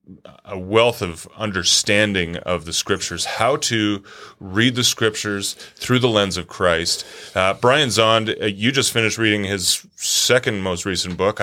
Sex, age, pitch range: male, 30-49, 90-115 Hz